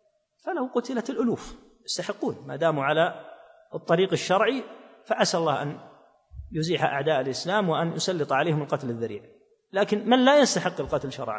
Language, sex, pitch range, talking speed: Arabic, male, 150-215 Hz, 135 wpm